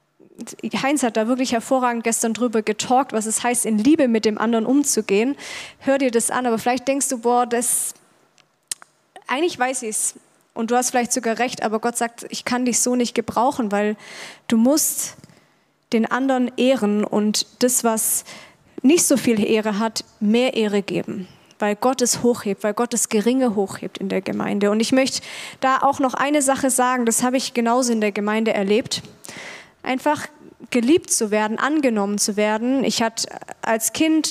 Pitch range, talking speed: 220-260 Hz, 180 wpm